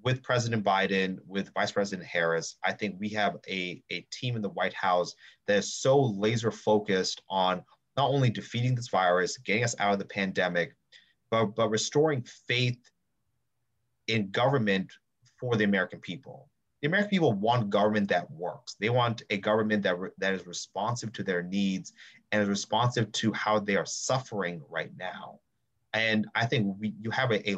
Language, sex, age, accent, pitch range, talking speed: English, male, 30-49, American, 100-120 Hz, 180 wpm